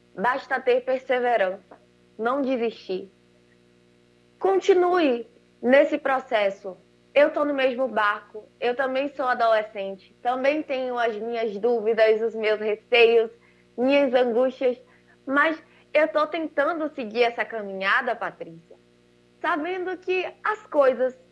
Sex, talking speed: female, 110 wpm